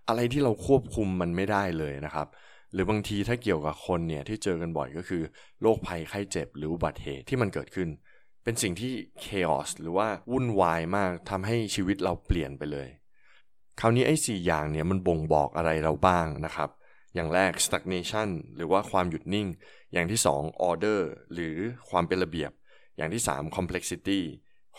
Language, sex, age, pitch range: Thai, male, 20-39, 80-105 Hz